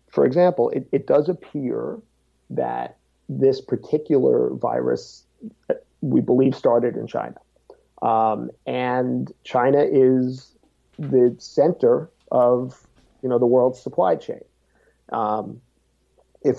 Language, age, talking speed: English, 50-69, 110 wpm